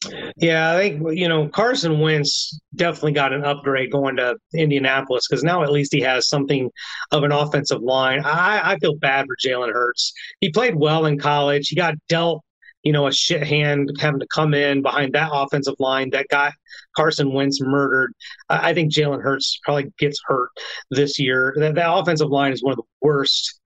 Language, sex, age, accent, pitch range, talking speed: English, male, 30-49, American, 140-165 Hz, 195 wpm